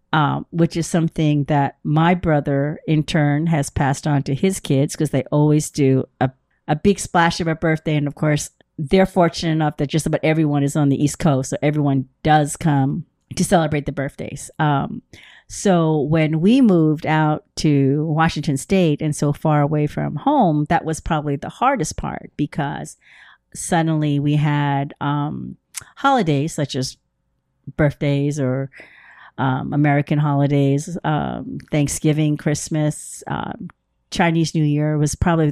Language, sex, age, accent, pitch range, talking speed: English, female, 40-59, American, 140-165 Hz, 155 wpm